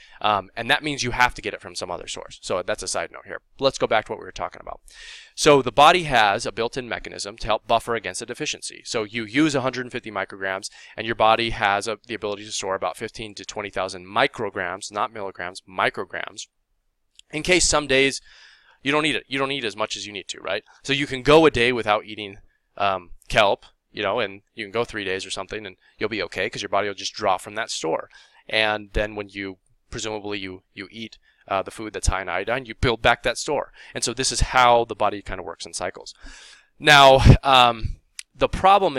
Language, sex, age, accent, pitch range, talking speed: English, male, 20-39, American, 100-130 Hz, 230 wpm